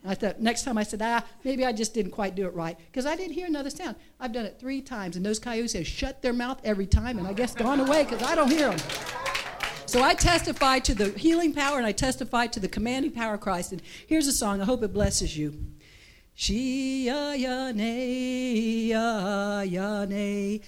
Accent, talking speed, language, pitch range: American, 220 wpm, English, 215-265 Hz